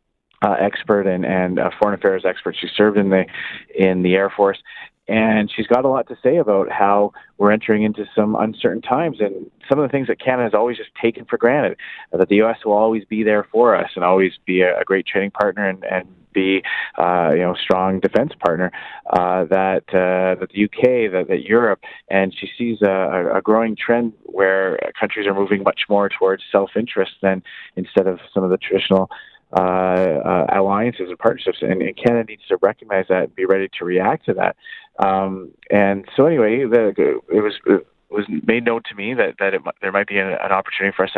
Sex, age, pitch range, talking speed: male, 30-49, 95-110 Hz, 215 wpm